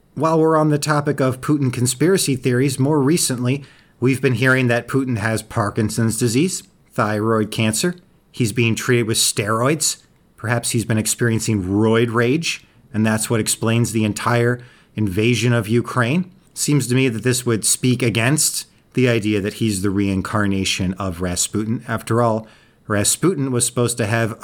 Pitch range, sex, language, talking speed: 110-140 Hz, male, English, 155 wpm